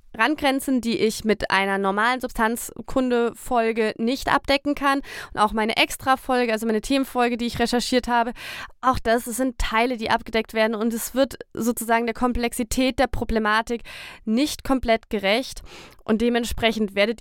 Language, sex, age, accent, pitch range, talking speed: German, female, 20-39, German, 215-265 Hz, 145 wpm